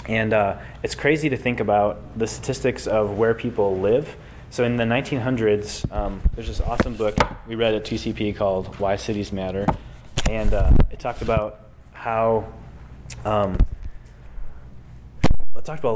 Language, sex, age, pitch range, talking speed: English, male, 20-39, 95-115 Hz, 145 wpm